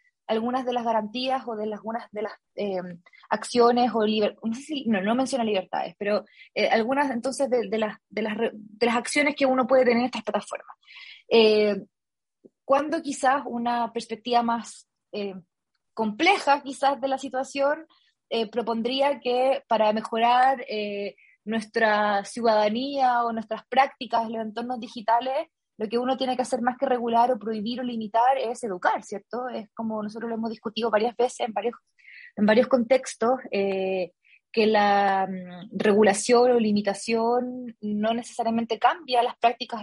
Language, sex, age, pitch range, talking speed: Spanish, female, 20-39, 220-260 Hz, 165 wpm